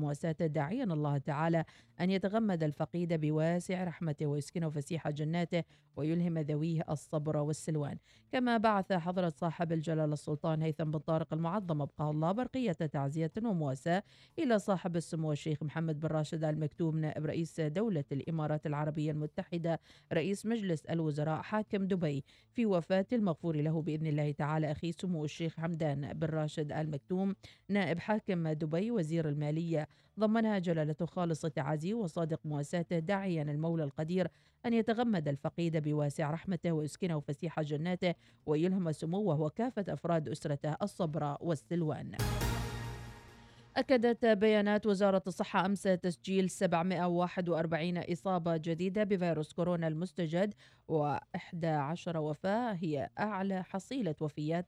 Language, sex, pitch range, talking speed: Arabic, female, 155-185 Hz, 120 wpm